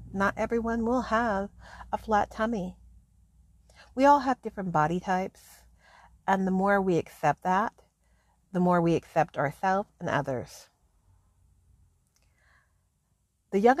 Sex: female